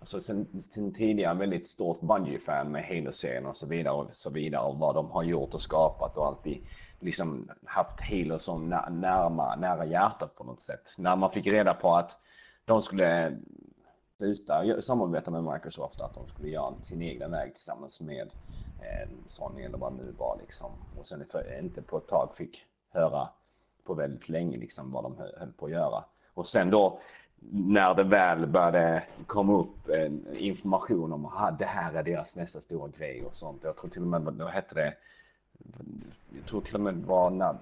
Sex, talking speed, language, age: male, 190 wpm, Swedish, 30-49